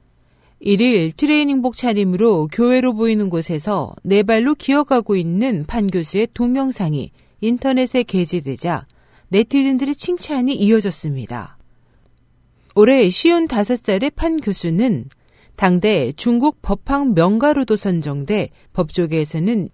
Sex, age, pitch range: female, 40-59, 175-260 Hz